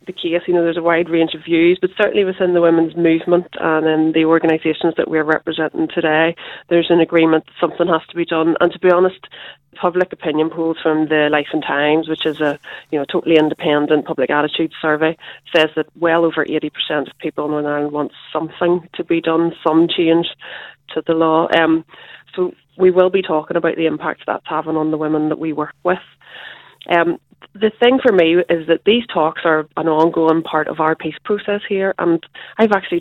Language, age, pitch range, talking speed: English, 30-49, 160-180 Hz, 205 wpm